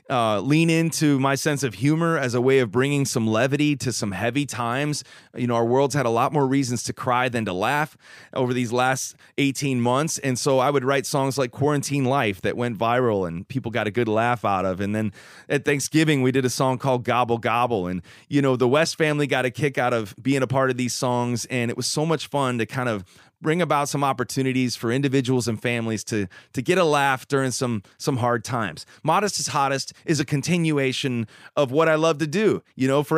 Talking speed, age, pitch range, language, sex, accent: 230 wpm, 30-49, 120-150 Hz, English, male, American